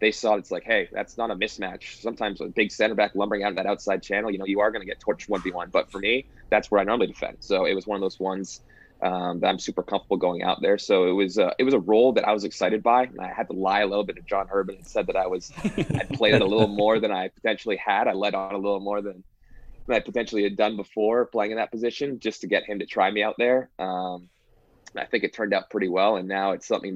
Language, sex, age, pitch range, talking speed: English, male, 20-39, 95-110 Hz, 295 wpm